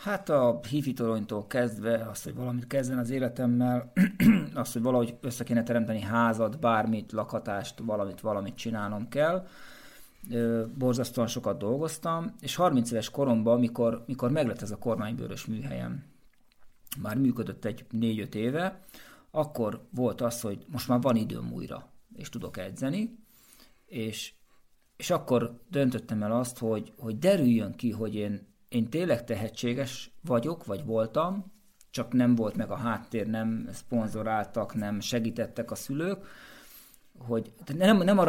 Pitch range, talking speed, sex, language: 110-135 Hz, 135 wpm, male, Hungarian